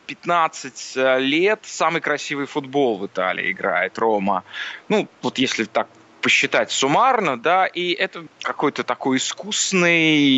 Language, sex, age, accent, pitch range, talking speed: Russian, male, 20-39, native, 125-175 Hz, 120 wpm